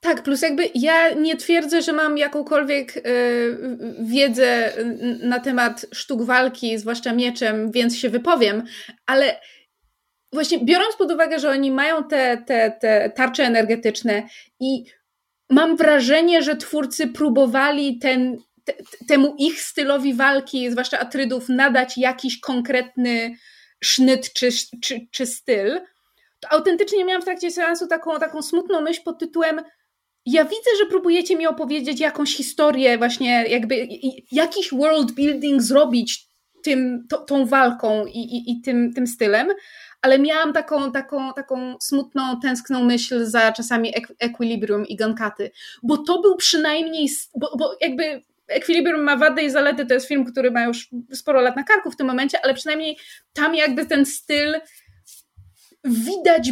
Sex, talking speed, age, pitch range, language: female, 140 wpm, 20-39, 245-305 Hz, Polish